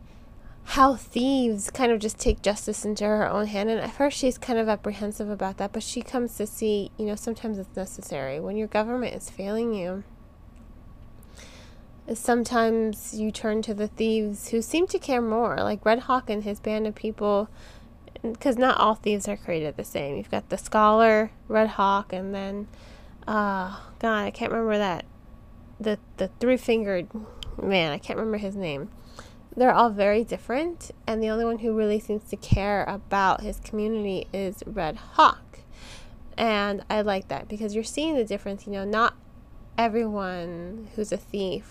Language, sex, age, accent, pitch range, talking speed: English, female, 20-39, American, 195-225 Hz, 175 wpm